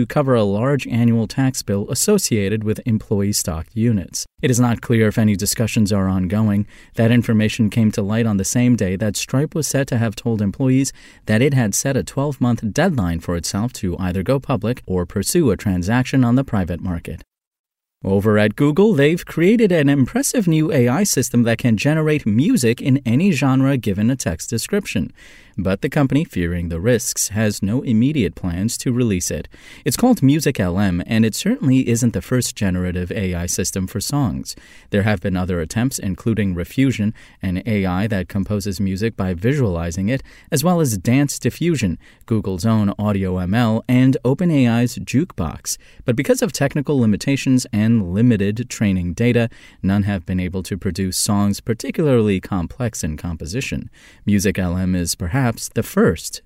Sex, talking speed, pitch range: male, 170 wpm, 100-130 Hz